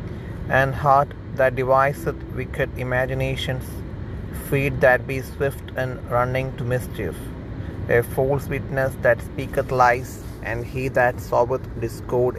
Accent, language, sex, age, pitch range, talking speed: native, Malayalam, male, 30-49, 110-130 Hz, 125 wpm